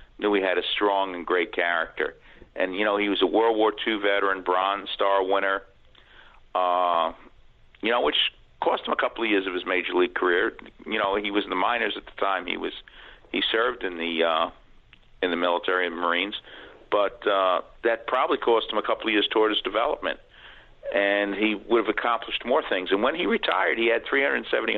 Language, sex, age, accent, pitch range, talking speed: English, male, 50-69, American, 95-115 Hz, 210 wpm